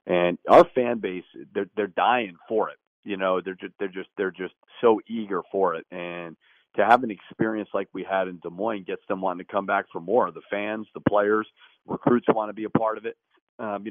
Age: 40-59